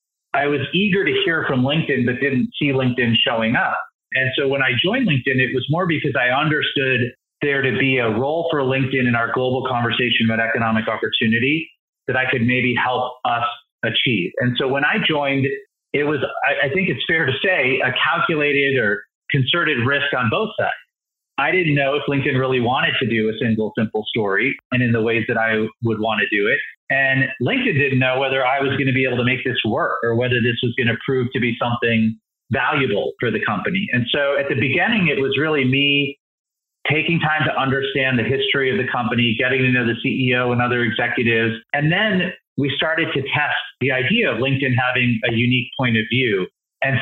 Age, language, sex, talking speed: 40-59, English, male, 210 wpm